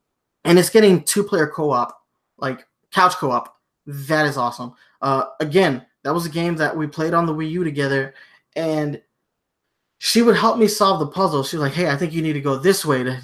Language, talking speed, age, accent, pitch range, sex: English, 205 wpm, 20-39, American, 145-200 Hz, male